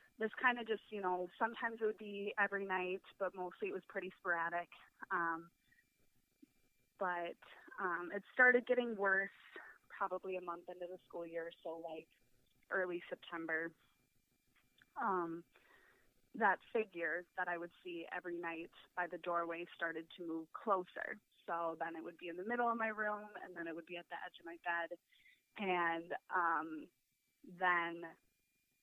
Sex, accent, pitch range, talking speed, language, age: female, American, 170-195 Hz, 160 wpm, English, 20-39